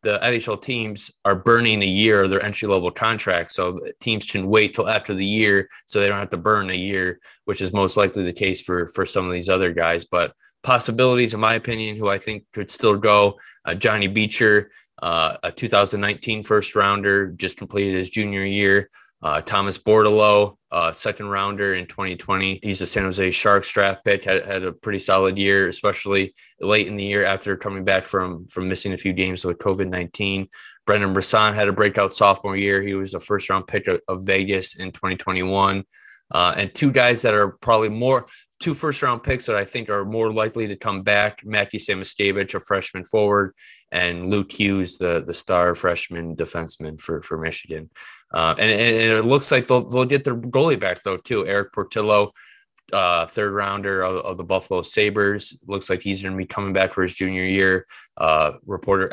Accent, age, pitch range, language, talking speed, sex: American, 20-39, 95-105 Hz, English, 195 wpm, male